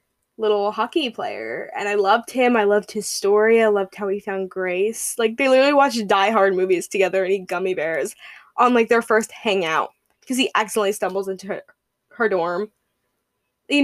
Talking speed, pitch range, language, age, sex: 180 wpm, 195-265 Hz, English, 10-29, female